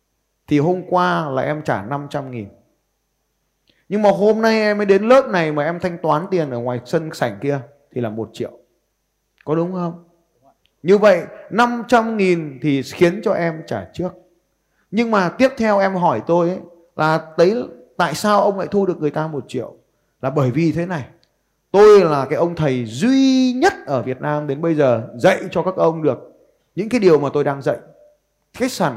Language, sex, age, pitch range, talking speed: Vietnamese, male, 20-39, 150-205 Hz, 195 wpm